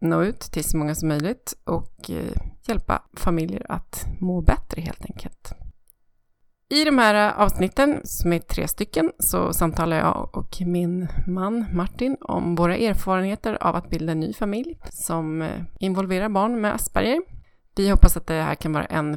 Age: 30-49